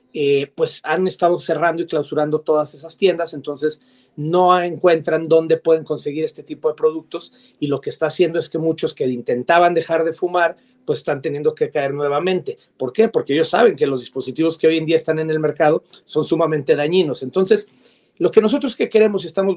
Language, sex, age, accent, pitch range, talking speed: English, male, 40-59, Mexican, 155-200 Hz, 200 wpm